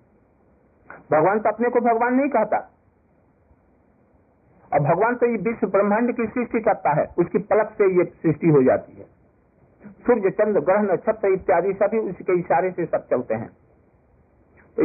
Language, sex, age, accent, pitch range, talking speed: Hindi, male, 50-69, native, 160-220 Hz, 160 wpm